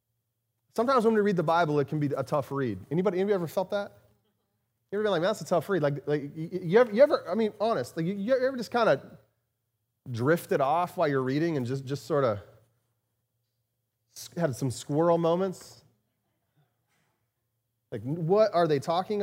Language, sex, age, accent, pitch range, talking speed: English, male, 30-49, American, 120-200 Hz, 190 wpm